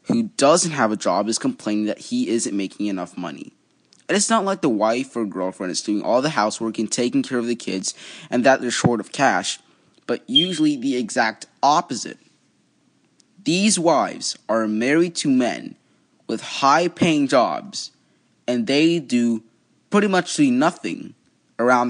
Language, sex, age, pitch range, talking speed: English, male, 20-39, 115-170 Hz, 170 wpm